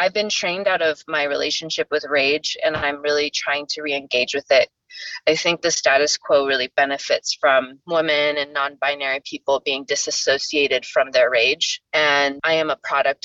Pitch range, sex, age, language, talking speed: 140-180 Hz, female, 20-39, English, 175 wpm